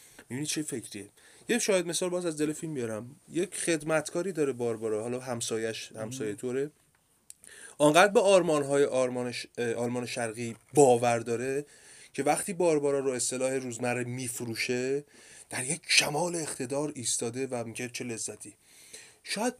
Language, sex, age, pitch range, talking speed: Persian, male, 30-49, 125-165 Hz, 135 wpm